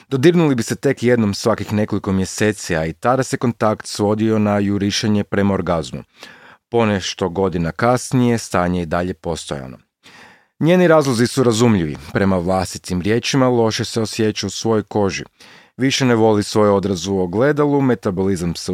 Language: Croatian